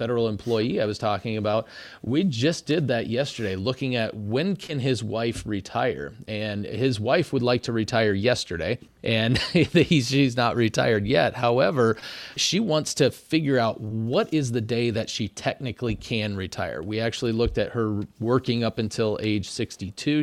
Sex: male